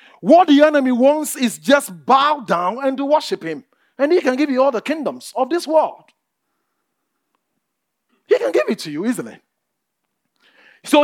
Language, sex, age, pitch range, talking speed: English, male, 40-59, 240-300 Hz, 175 wpm